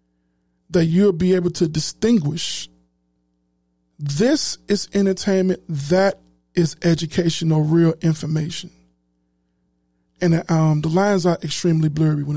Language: English